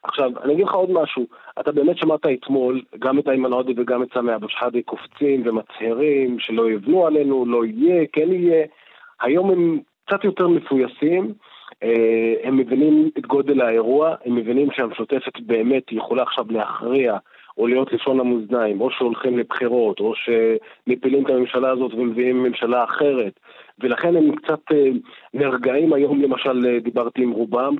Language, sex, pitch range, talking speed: Hebrew, male, 125-165 Hz, 145 wpm